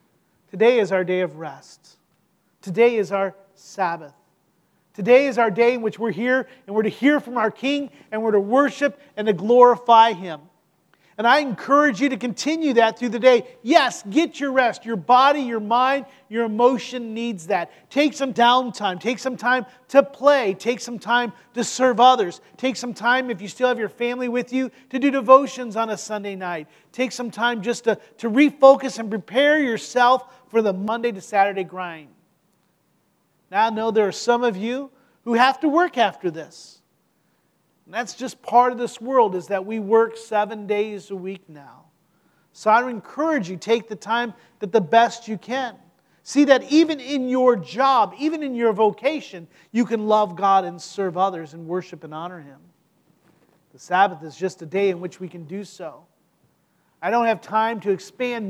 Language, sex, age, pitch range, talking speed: English, male, 40-59, 190-250 Hz, 190 wpm